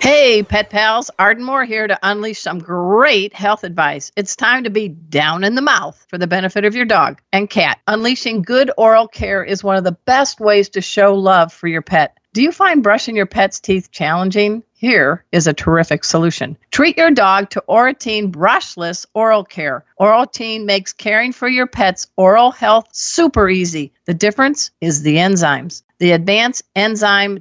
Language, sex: English, female